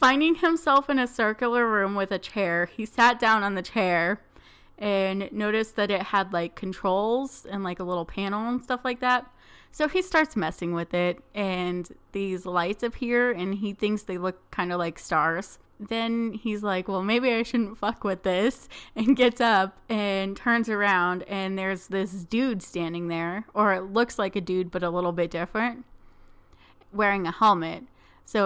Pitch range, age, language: 185-230 Hz, 20-39, English